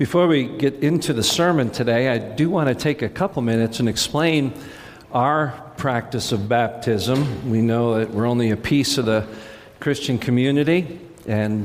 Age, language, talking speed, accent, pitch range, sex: 50-69, English, 165 wpm, American, 115-145 Hz, male